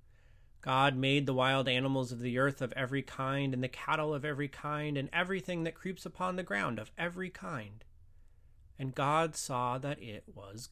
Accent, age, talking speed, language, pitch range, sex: American, 30-49, 185 wpm, English, 125-165 Hz, male